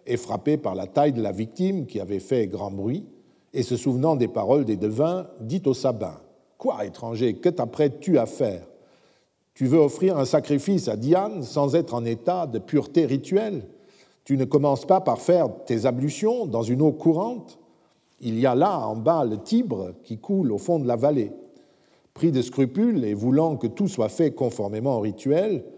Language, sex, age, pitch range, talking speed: French, male, 50-69, 115-160 Hz, 195 wpm